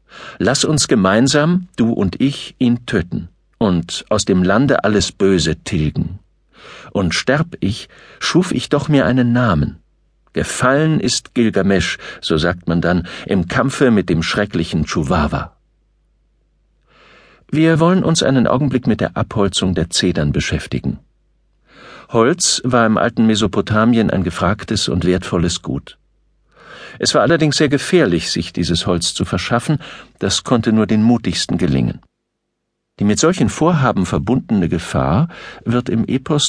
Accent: German